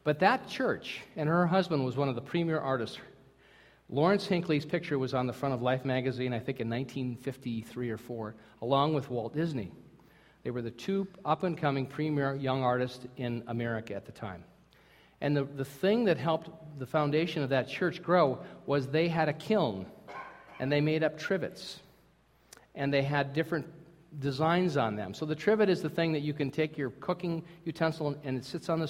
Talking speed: 190 wpm